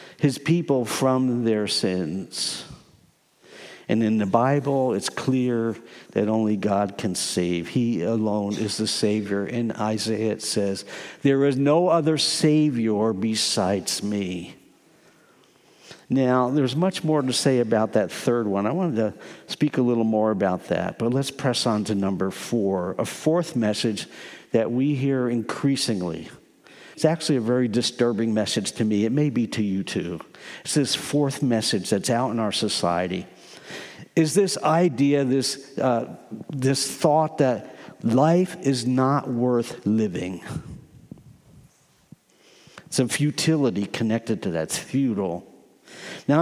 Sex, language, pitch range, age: male, English, 110-140 Hz, 60-79